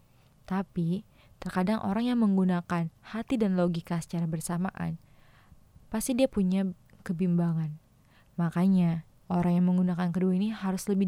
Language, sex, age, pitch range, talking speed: Indonesian, female, 20-39, 165-200 Hz, 120 wpm